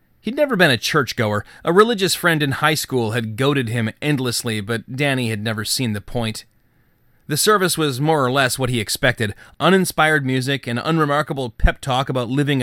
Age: 30-49